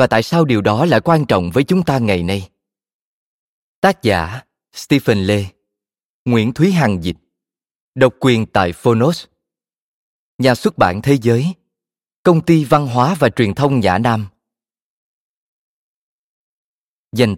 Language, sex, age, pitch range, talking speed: Vietnamese, male, 20-39, 100-140 Hz, 140 wpm